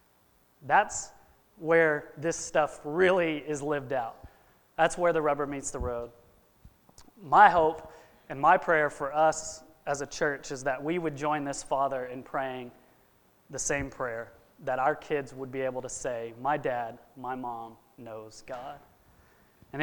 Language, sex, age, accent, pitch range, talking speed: English, male, 30-49, American, 130-160 Hz, 155 wpm